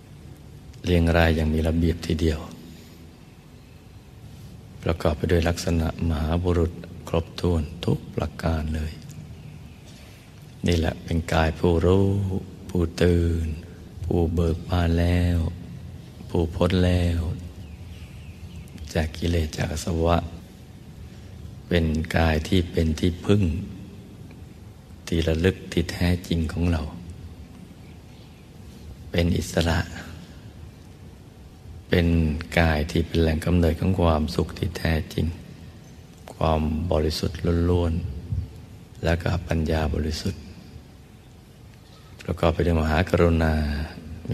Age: 60-79